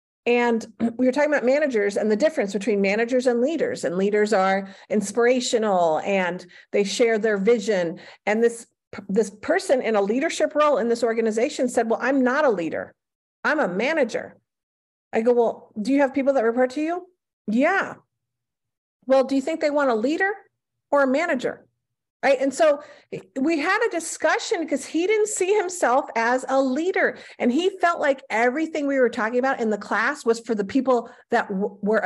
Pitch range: 220-295 Hz